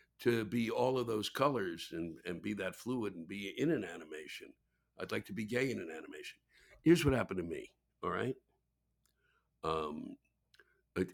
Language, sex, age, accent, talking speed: English, male, 60-79, American, 180 wpm